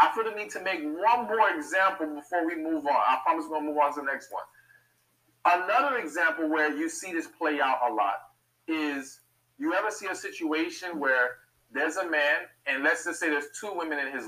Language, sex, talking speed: English, male, 225 wpm